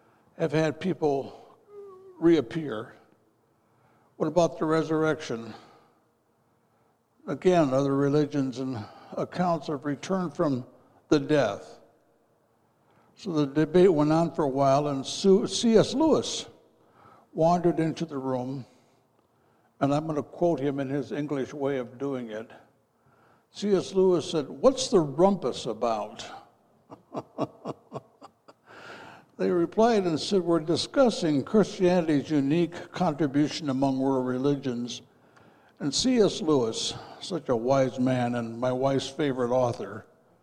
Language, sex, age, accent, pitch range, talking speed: English, male, 60-79, American, 130-170 Hz, 115 wpm